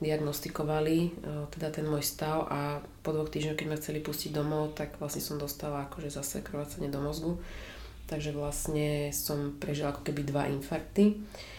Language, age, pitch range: Czech, 20-39, 145-155 Hz